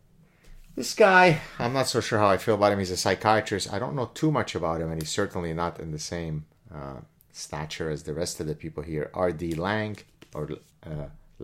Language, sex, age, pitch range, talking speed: English, male, 30-49, 85-110 Hz, 215 wpm